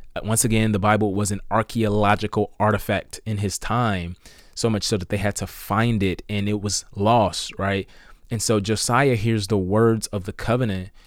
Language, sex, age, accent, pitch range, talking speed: English, male, 20-39, American, 100-115 Hz, 185 wpm